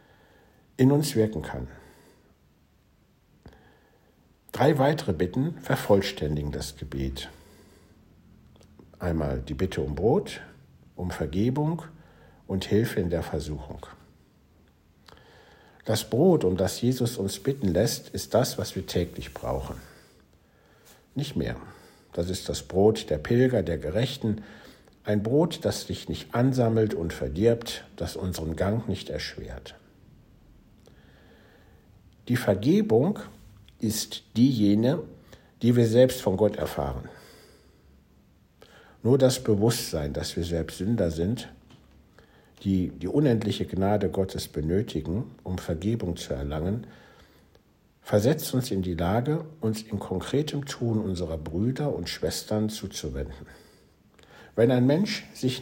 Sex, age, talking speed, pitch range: male, 60-79, 115 wpm, 80-120 Hz